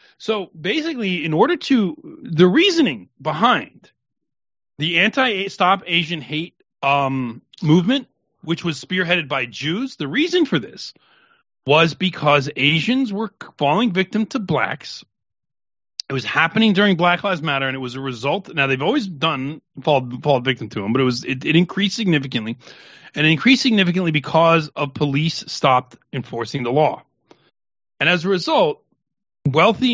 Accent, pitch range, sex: American, 135-190 Hz, male